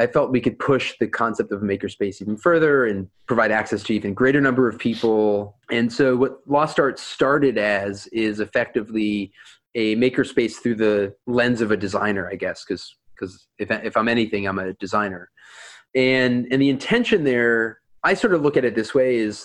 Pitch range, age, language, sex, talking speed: 105-125 Hz, 30-49, English, male, 190 wpm